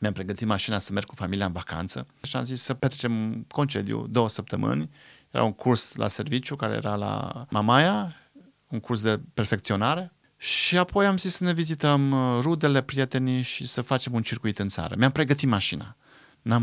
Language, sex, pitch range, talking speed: Romanian, male, 100-130 Hz, 180 wpm